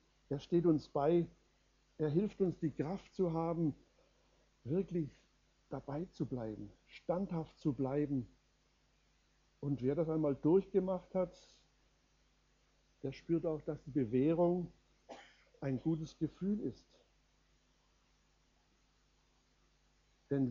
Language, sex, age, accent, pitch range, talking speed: German, male, 60-79, German, 130-165 Hz, 100 wpm